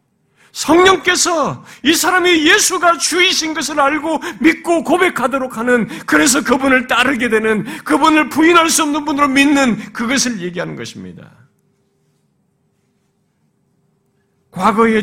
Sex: male